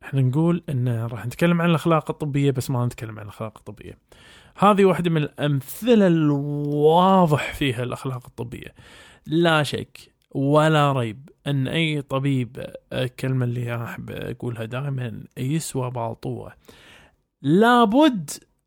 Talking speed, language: 120 wpm, Arabic